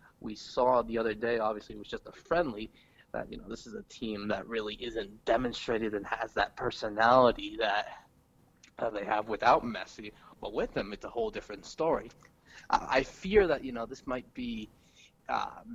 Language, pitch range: English, 110-130 Hz